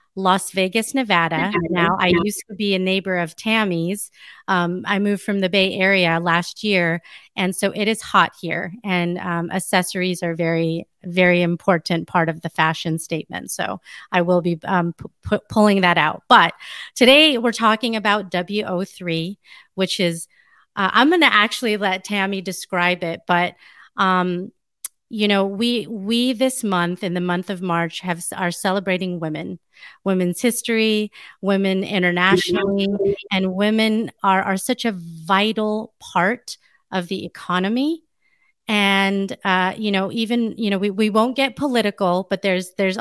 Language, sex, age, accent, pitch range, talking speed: English, female, 30-49, American, 180-210 Hz, 160 wpm